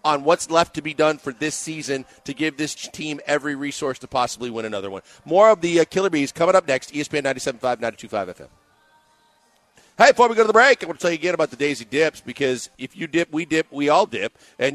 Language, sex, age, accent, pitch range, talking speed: English, male, 50-69, American, 145-185 Hz, 240 wpm